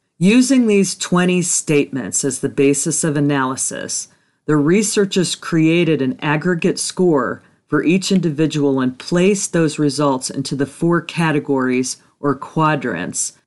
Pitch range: 140-180 Hz